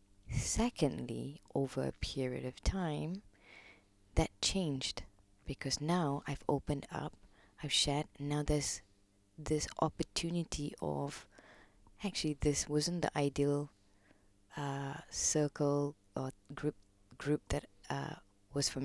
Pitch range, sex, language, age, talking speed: 100-150 Hz, female, English, 20-39, 110 wpm